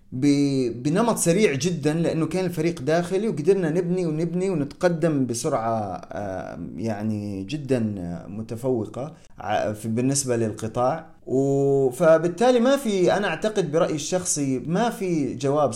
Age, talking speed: 30-49, 105 wpm